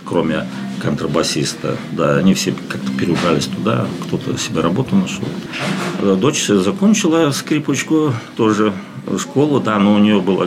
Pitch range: 80-105 Hz